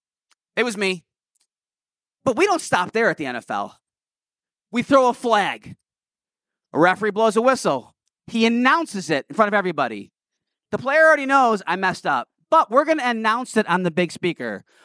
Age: 30-49